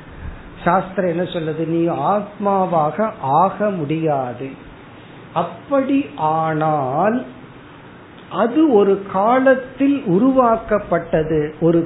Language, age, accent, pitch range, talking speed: Tamil, 50-69, native, 155-215 Hz, 70 wpm